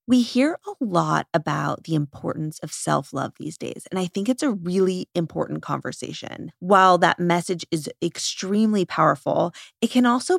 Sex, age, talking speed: female, 20-39, 160 wpm